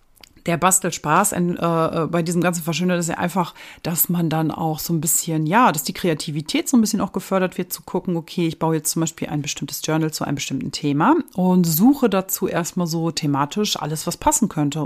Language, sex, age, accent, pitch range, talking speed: German, female, 40-59, German, 160-195 Hz, 205 wpm